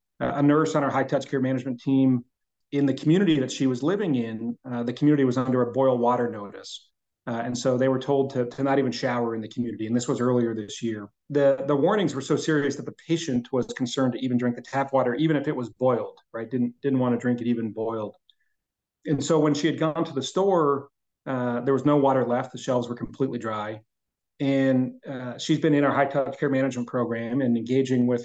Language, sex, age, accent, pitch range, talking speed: English, male, 30-49, American, 120-140 Hz, 235 wpm